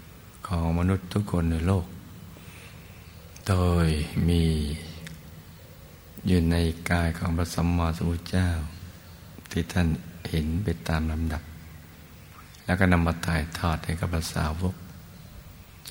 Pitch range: 80-90 Hz